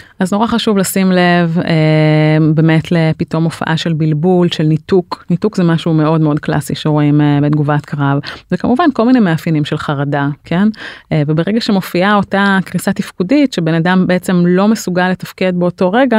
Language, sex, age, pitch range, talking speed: Hebrew, female, 30-49, 160-195 Hz, 165 wpm